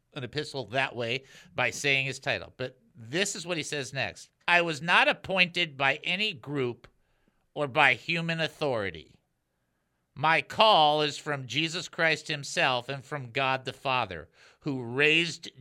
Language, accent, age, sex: English, American, 50-69, male